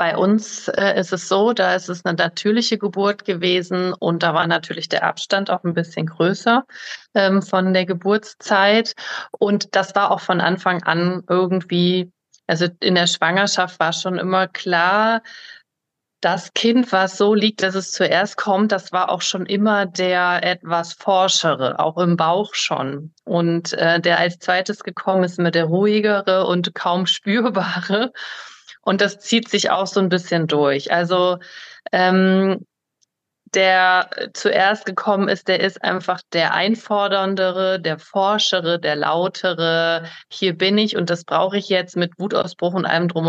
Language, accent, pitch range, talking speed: German, German, 175-200 Hz, 150 wpm